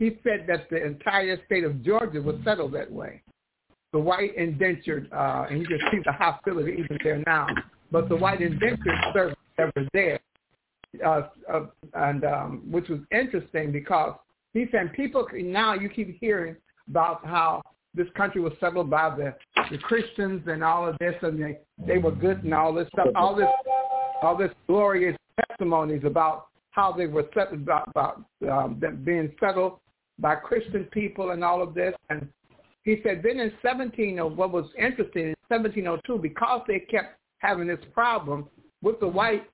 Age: 60-79